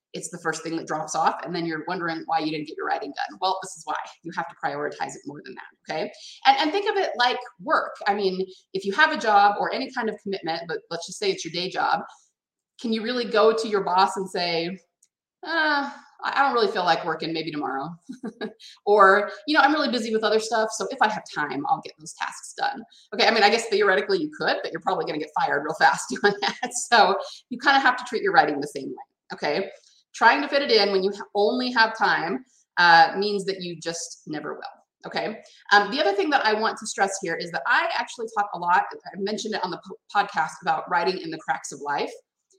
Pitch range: 175-245 Hz